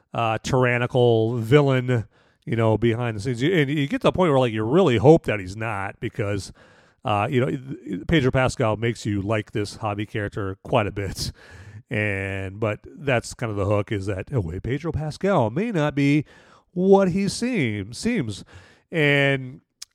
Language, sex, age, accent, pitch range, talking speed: English, male, 40-59, American, 110-140 Hz, 180 wpm